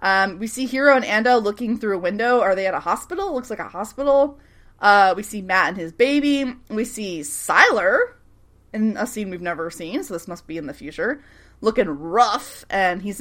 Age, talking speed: 20-39, 215 wpm